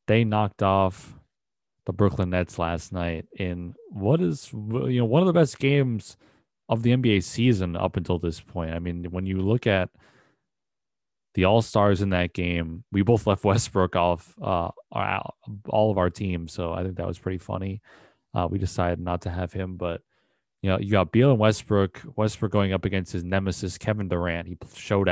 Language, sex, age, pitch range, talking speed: English, male, 20-39, 90-110 Hz, 190 wpm